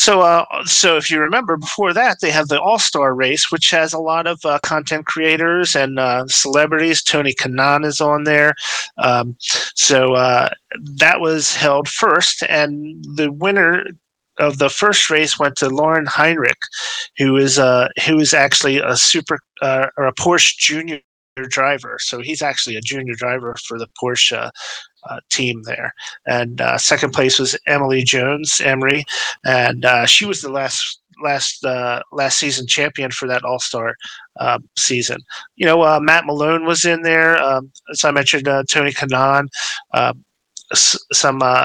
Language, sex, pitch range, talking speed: English, male, 130-155 Hz, 170 wpm